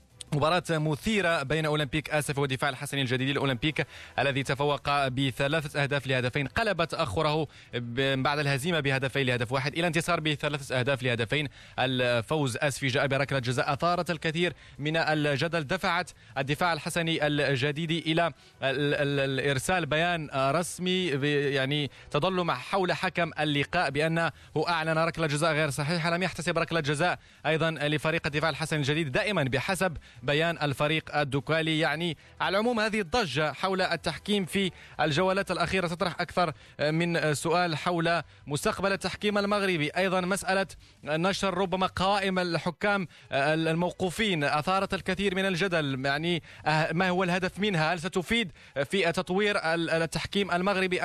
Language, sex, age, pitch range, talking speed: Arabic, male, 20-39, 145-180 Hz, 125 wpm